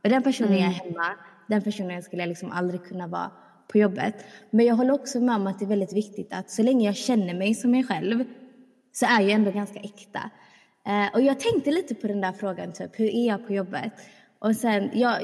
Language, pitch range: Swedish, 200-255 Hz